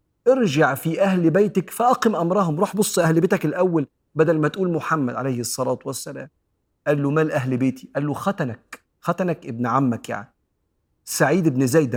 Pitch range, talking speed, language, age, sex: 125-170 Hz, 165 wpm, Arabic, 40-59, male